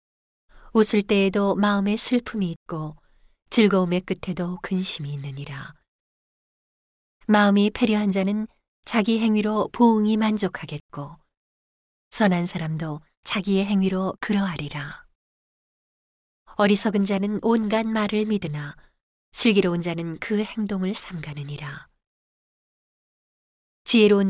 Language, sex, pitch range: Korean, female, 165-210 Hz